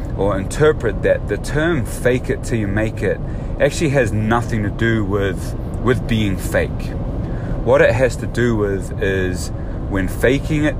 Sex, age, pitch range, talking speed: male, 30-49, 95-115 Hz, 165 wpm